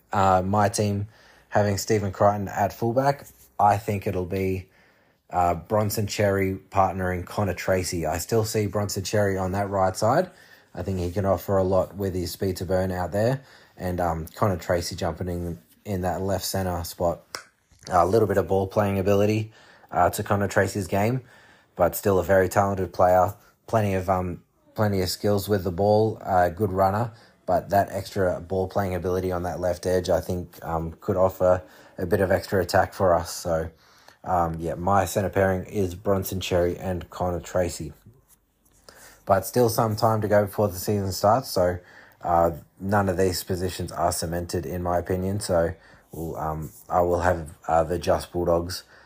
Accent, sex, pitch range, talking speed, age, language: Australian, male, 90-100 Hz, 180 wpm, 20-39, English